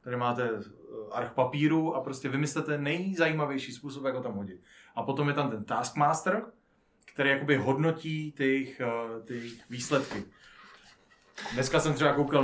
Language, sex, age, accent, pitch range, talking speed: Czech, male, 30-49, native, 125-150 Hz, 145 wpm